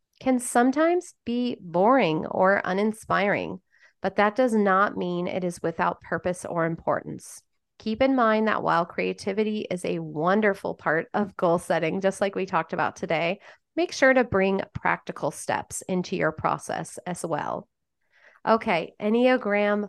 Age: 30-49